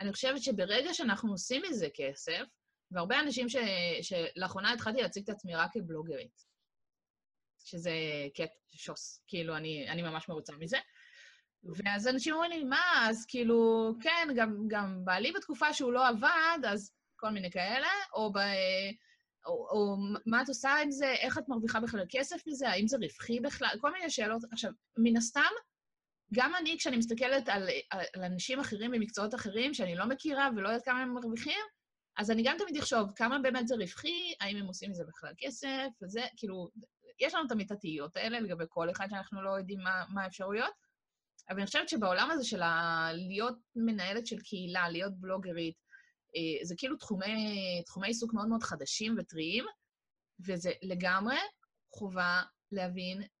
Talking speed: 165 wpm